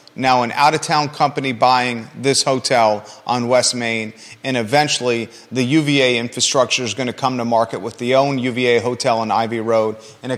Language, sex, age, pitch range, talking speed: English, male, 30-49, 120-150 Hz, 180 wpm